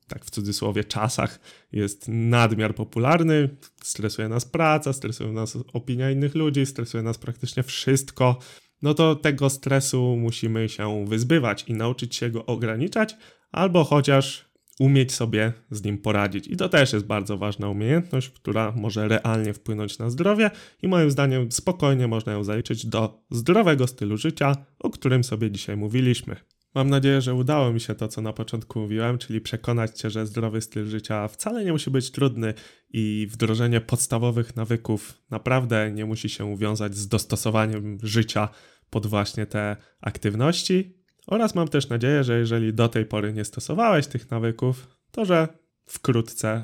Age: 20-39